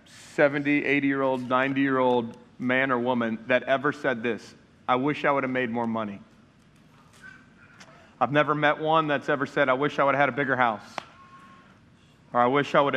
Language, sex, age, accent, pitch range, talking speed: English, male, 30-49, American, 125-155 Hz, 180 wpm